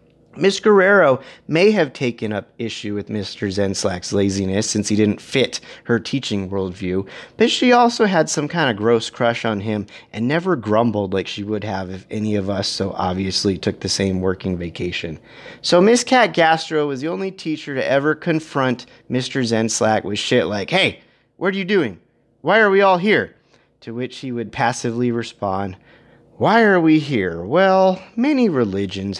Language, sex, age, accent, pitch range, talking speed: English, male, 30-49, American, 100-150 Hz, 175 wpm